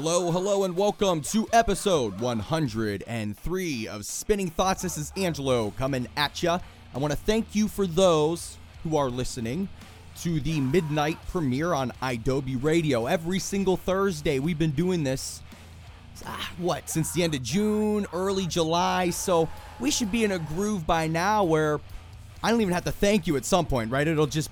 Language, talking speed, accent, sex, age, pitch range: English, 175 wpm, American, male, 30-49, 125-185 Hz